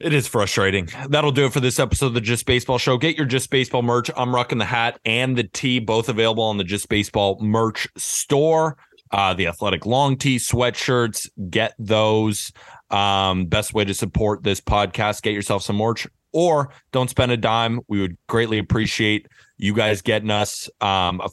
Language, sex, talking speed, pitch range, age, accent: English, male, 190 wpm, 100-120 Hz, 30-49, American